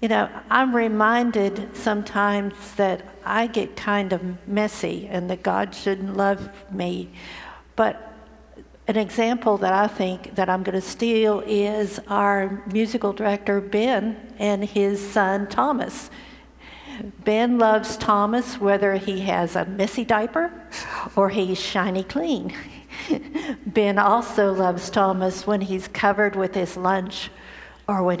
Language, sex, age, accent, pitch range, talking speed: English, female, 50-69, American, 185-215 Hz, 130 wpm